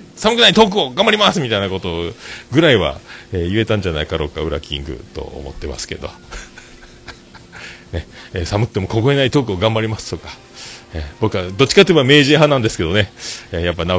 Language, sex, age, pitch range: Japanese, male, 40-59, 85-125 Hz